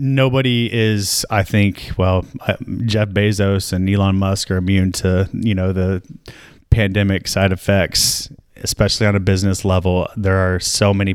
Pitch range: 95-105 Hz